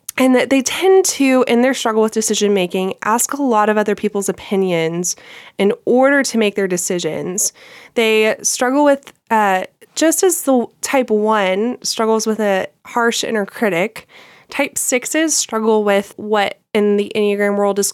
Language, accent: English, American